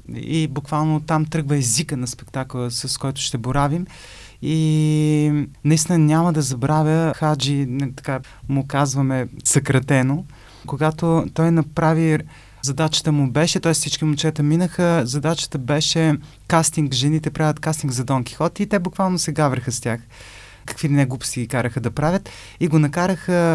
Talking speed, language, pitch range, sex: 145 wpm, Bulgarian, 135-155 Hz, male